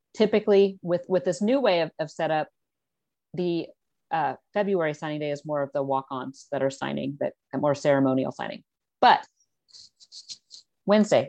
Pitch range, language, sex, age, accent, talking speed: 155-185 Hz, English, female, 40-59, American, 155 wpm